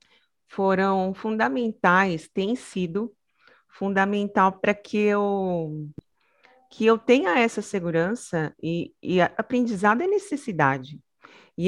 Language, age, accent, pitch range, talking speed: Portuguese, 40-59, Brazilian, 170-220 Hz, 100 wpm